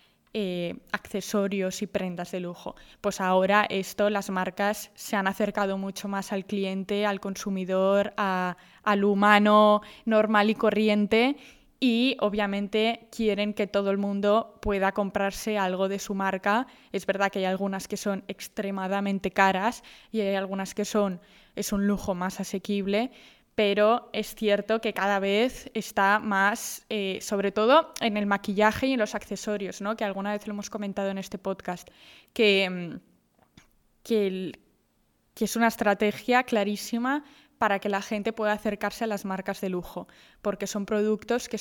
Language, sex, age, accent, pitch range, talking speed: Spanish, female, 10-29, Spanish, 195-225 Hz, 155 wpm